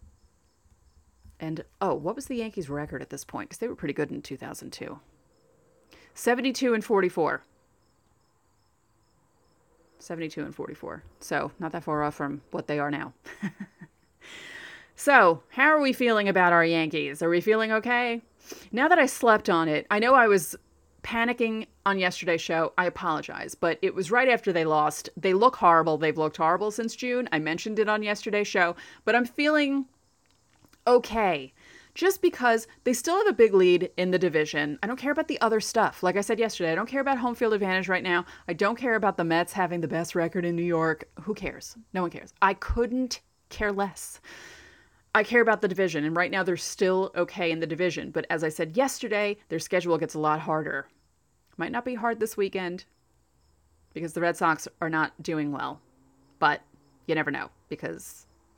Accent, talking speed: American, 185 wpm